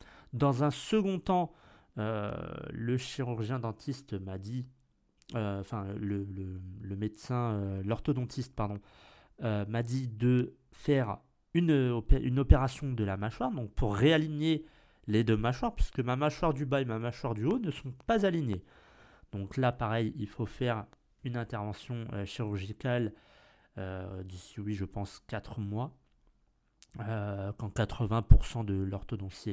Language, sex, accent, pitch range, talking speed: French, male, French, 105-155 Hz, 145 wpm